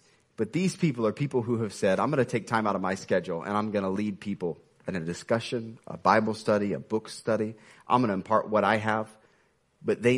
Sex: male